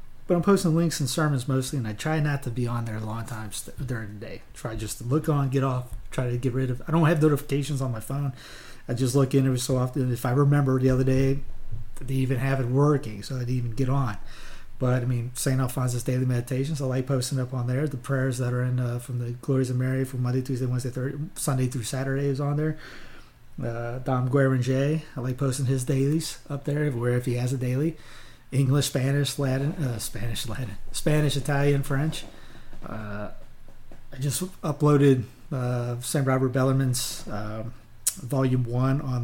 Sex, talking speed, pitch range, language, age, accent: male, 210 wpm, 120-140 Hz, English, 30-49, American